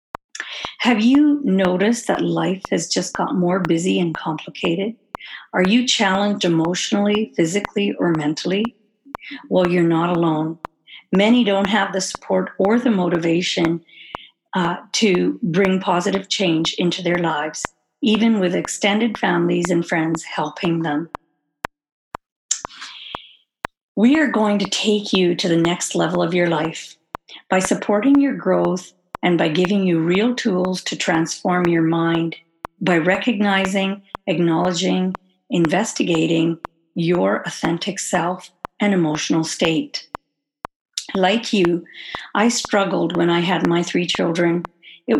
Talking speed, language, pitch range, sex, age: 125 wpm, English, 170-200 Hz, female, 50-69